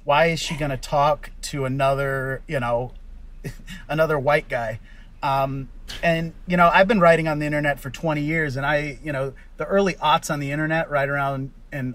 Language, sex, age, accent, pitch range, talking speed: English, male, 30-49, American, 130-165 Hz, 195 wpm